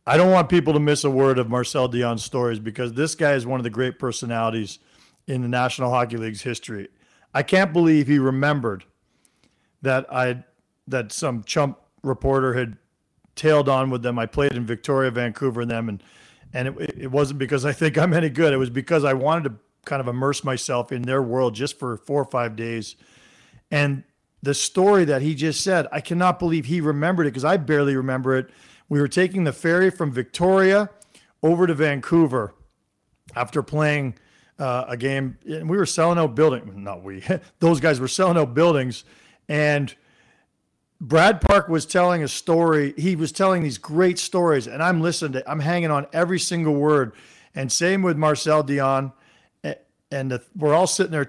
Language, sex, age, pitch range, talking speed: English, male, 50-69, 130-165 Hz, 190 wpm